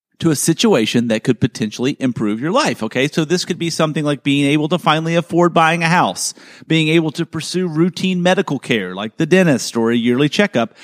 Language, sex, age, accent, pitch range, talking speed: English, male, 40-59, American, 125-180 Hz, 210 wpm